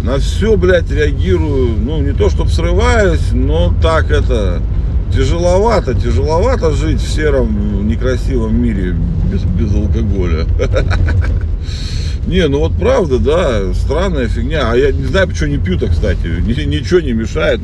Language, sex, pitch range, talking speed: Russian, male, 85-95 Hz, 140 wpm